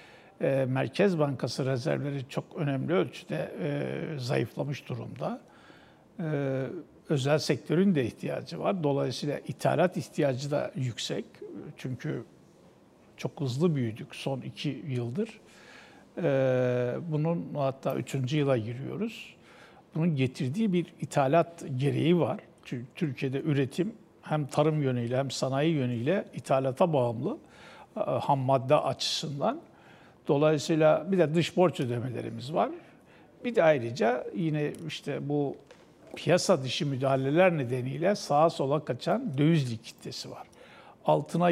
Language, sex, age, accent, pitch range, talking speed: Turkish, male, 60-79, native, 135-165 Hz, 105 wpm